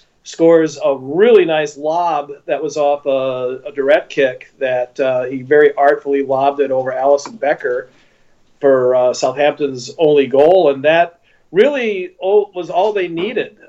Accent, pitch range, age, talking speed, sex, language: American, 140-175 Hz, 40-59, 150 wpm, male, English